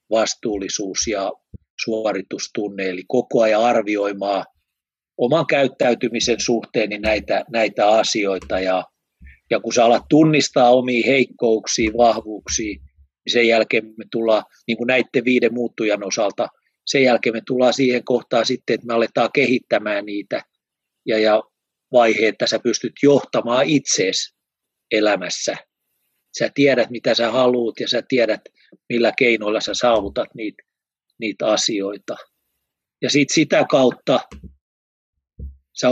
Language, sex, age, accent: Finnish, male, 30-49, native